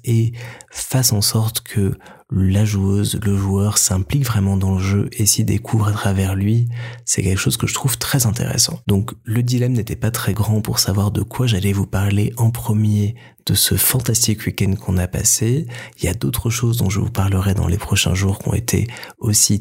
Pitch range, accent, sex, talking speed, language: 100-125 Hz, French, male, 210 wpm, French